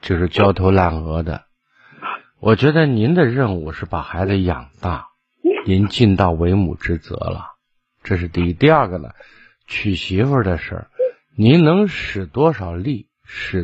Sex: male